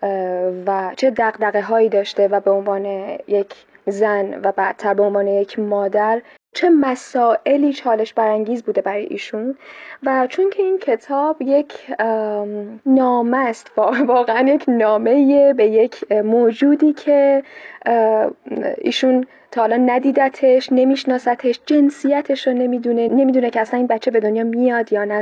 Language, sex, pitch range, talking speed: Persian, female, 215-265 Hz, 130 wpm